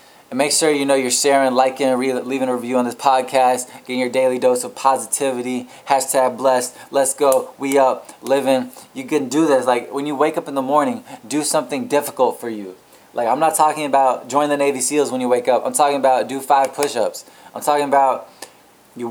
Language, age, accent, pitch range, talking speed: English, 20-39, American, 125-145 Hz, 210 wpm